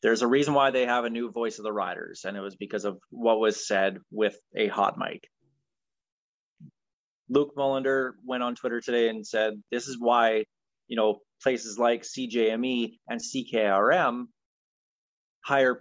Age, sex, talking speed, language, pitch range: 30-49, male, 165 wpm, English, 110-135 Hz